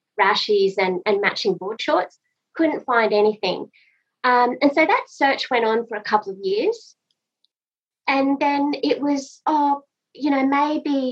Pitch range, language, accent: 200-285 Hz, English, Australian